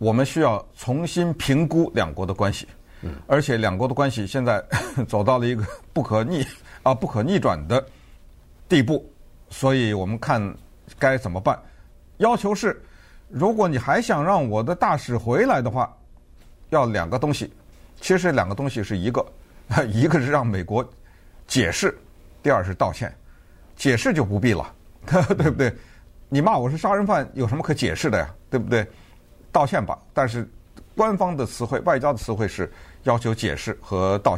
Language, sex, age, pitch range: Chinese, male, 50-69, 100-140 Hz